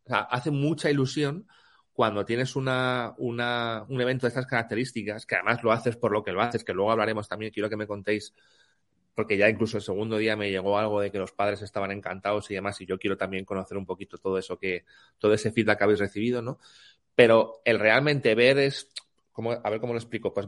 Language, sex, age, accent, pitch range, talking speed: Spanish, male, 30-49, Spanish, 105-130 Hz, 225 wpm